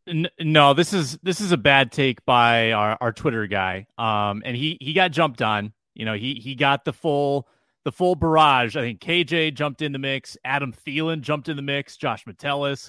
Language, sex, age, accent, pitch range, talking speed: English, male, 30-49, American, 115-160 Hz, 210 wpm